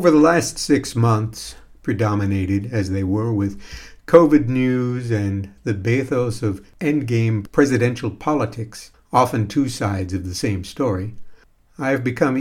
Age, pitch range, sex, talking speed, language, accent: 60-79, 100-135 Hz, male, 140 wpm, English, American